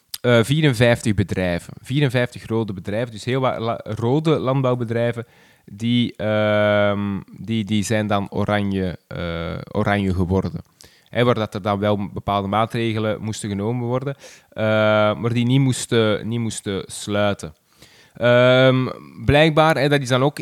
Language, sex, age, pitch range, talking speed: Dutch, male, 20-39, 110-135 Hz, 145 wpm